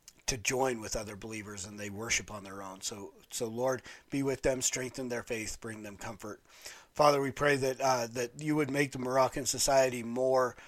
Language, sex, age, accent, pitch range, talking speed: English, male, 40-59, American, 115-140 Hz, 200 wpm